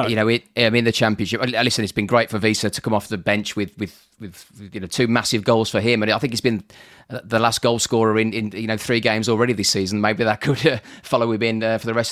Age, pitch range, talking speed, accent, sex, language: 30-49, 110-140 Hz, 275 wpm, British, male, English